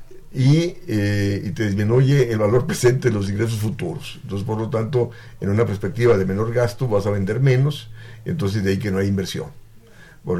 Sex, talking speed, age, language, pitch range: male, 195 wpm, 50-69, Spanish, 100-130 Hz